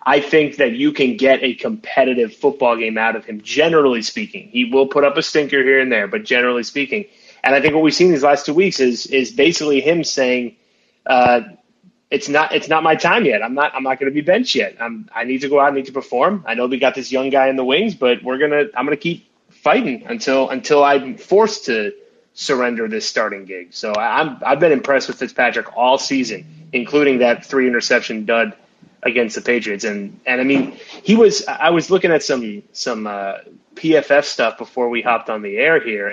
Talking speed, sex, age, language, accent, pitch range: 225 wpm, male, 30-49, English, American, 130-200 Hz